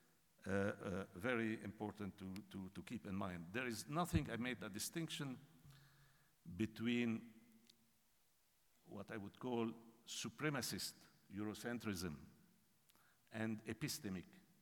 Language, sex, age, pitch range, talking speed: Portuguese, male, 60-79, 90-115 Hz, 105 wpm